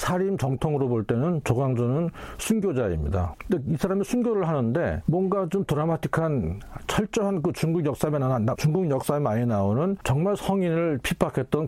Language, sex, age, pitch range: Korean, male, 40-59, 115-165 Hz